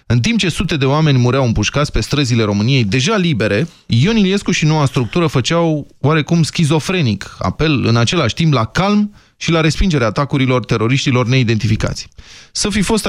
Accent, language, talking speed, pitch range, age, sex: native, Romanian, 165 wpm, 115-160 Hz, 20-39, male